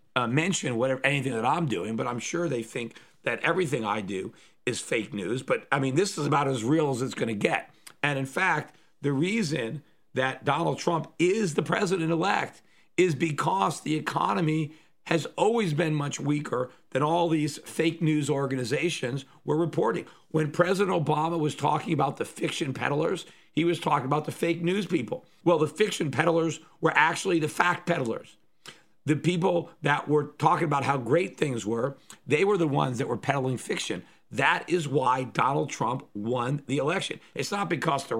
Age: 50-69